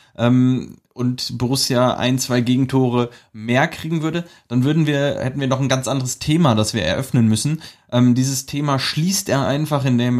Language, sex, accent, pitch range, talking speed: German, male, German, 120-150 Hz, 170 wpm